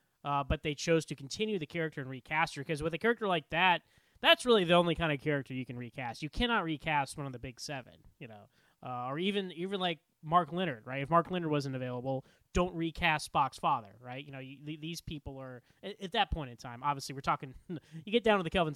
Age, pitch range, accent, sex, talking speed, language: 20-39, 135-175 Hz, American, male, 245 wpm, English